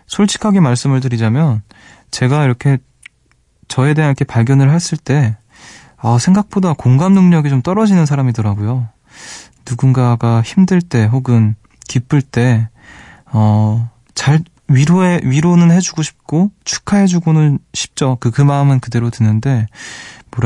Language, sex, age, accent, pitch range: Korean, male, 20-39, native, 115-145 Hz